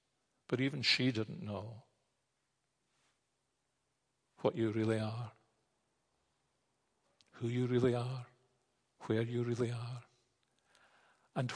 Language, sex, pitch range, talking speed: English, male, 120-165 Hz, 95 wpm